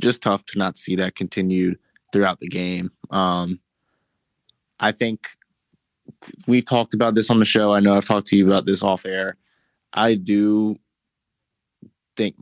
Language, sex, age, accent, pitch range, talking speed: English, male, 20-39, American, 95-105 Hz, 160 wpm